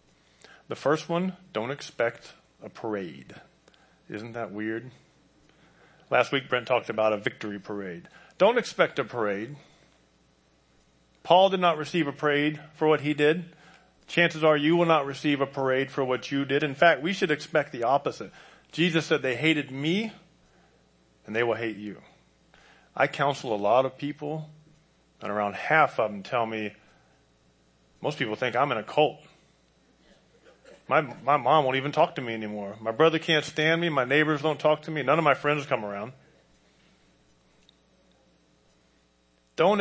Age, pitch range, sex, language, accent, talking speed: 40-59, 105-165 Hz, male, English, American, 165 wpm